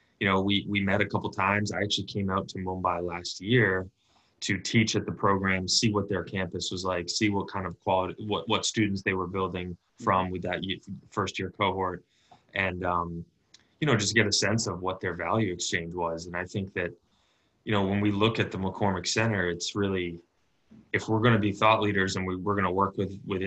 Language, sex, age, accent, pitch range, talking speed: English, male, 20-39, American, 90-105 Hz, 225 wpm